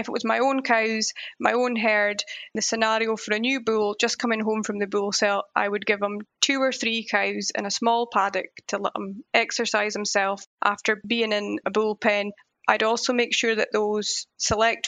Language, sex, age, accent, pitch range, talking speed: English, female, 20-39, British, 205-225 Hz, 205 wpm